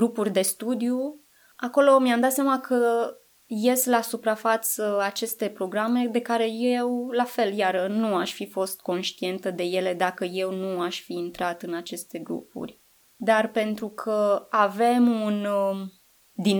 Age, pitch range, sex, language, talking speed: 20-39, 190-235 Hz, female, Romanian, 150 wpm